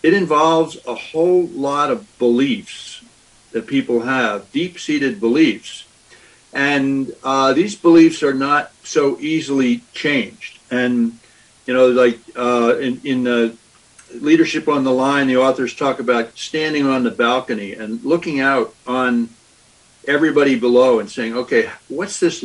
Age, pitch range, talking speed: 60-79, 125-165 Hz, 140 wpm